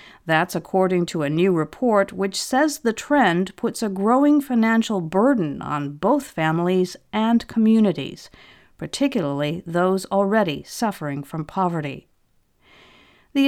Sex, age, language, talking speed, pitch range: female, 50-69, English, 120 wpm, 160-220 Hz